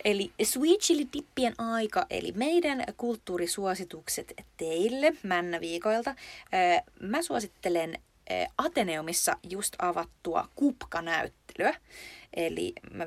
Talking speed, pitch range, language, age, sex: 75 wpm, 170-240 Hz, Finnish, 20-39, female